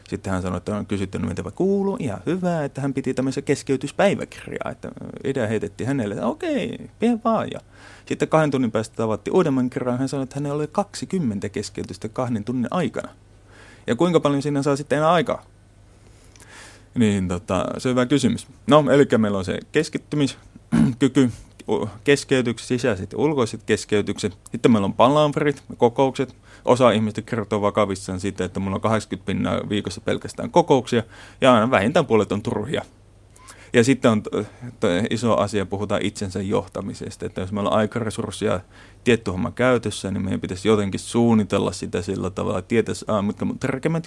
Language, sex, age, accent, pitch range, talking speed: Finnish, male, 30-49, native, 100-135 Hz, 160 wpm